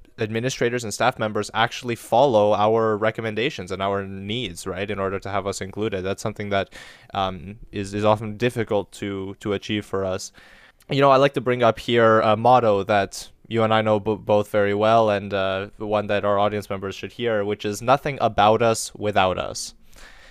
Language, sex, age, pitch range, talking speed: English, male, 20-39, 100-125 Hz, 200 wpm